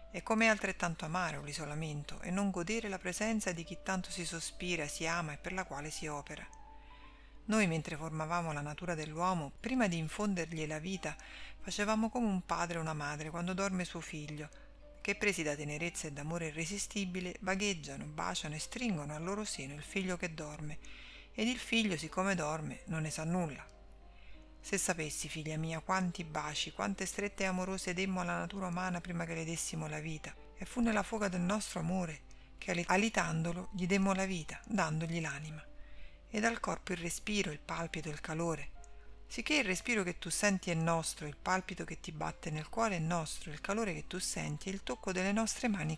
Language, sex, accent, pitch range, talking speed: Italian, female, native, 155-195 Hz, 190 wpm